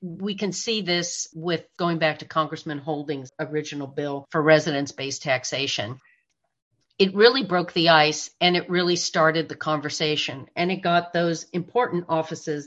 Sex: female